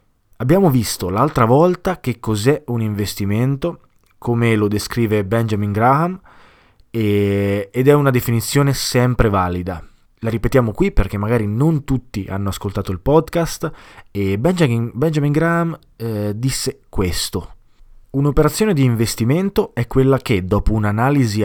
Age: 20-39